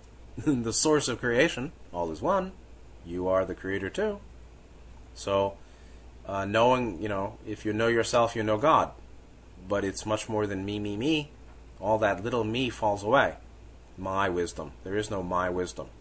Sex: male